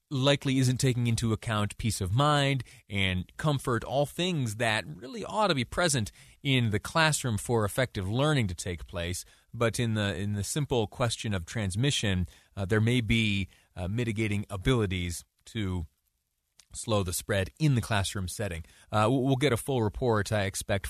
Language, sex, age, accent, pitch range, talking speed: English, male, 30-49, American, 100-140 Hz, 170 wpm